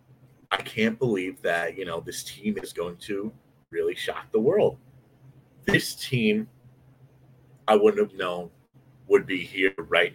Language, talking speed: English, 150 wpm